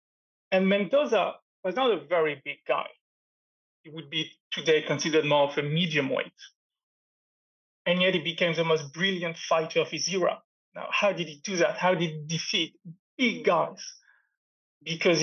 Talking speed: 165 wpm